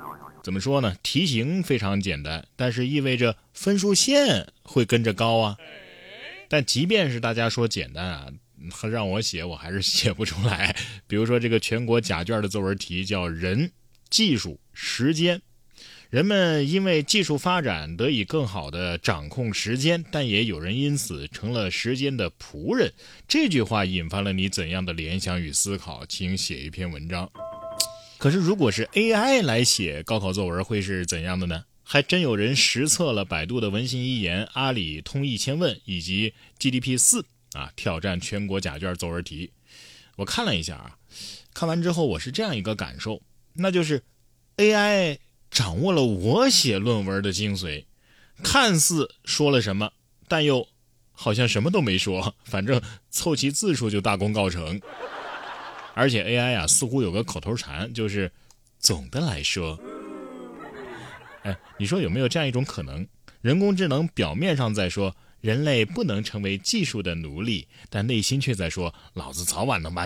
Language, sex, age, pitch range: Chinese, male, 20-39, 95-135 Hz